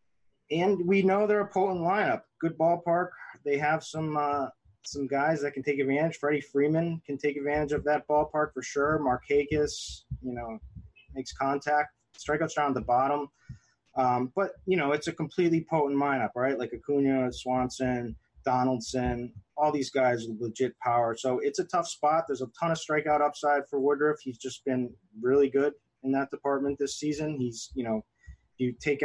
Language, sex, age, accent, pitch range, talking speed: English, male, 20-39, American, 125-150 Hz, 180 wpm